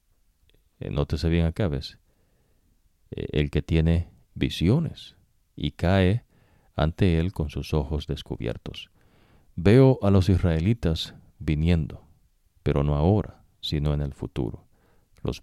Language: English